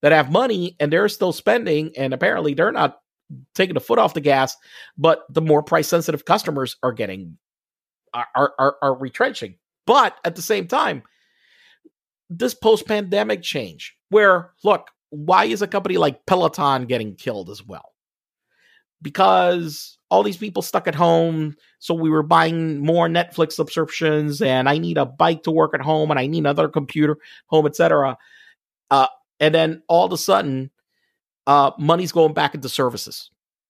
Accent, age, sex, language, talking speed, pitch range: American, 40-59, male, English, 165 wpm, 140-170 Hz